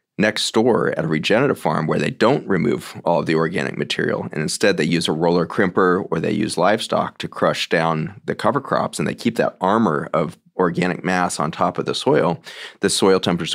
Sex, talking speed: male, 215 wpm